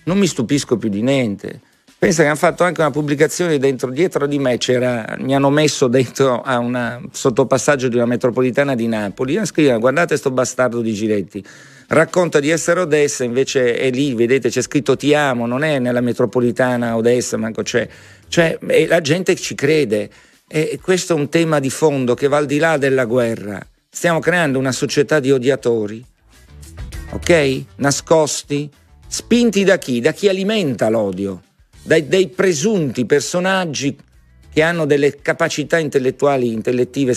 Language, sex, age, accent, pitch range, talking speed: Italian, male, 50-69, native, 125-160 Hz, 165 wpm